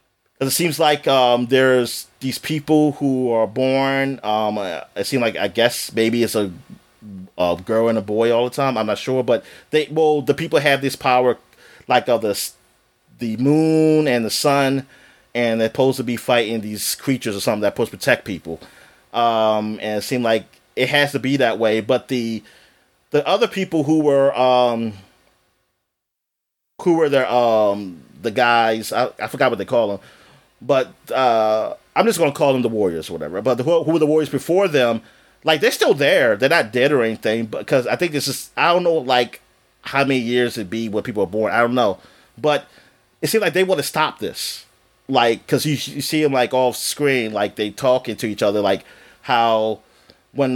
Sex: male